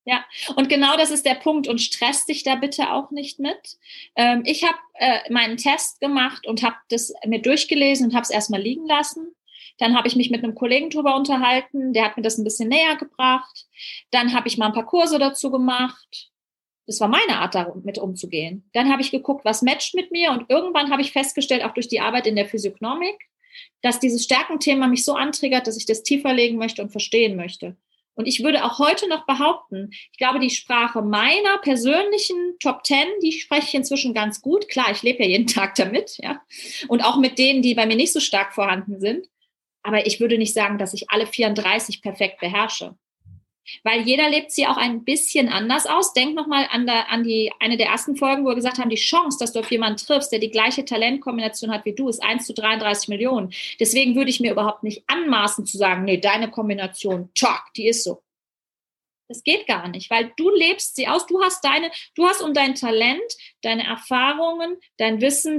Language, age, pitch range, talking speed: German, 30-49, 225-290 Hz, 210 wpm